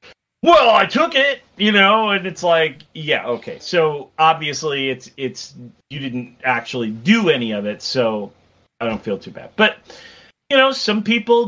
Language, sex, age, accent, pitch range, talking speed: English, male, 40-59, American, 145-200 Hz, 175 wpm